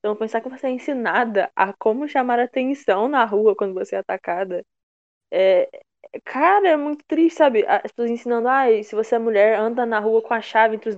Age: 10-29